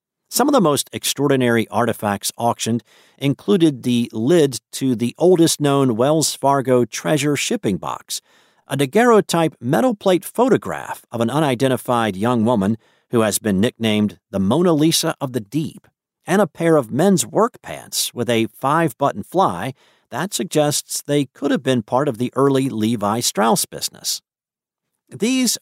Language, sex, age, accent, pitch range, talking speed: English, male, 50-69, American, 110-150 Hz, 150 wpm